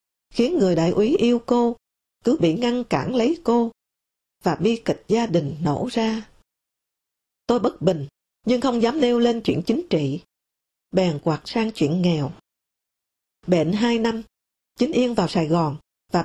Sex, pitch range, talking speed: female, 170-235 Hz, 165 wpm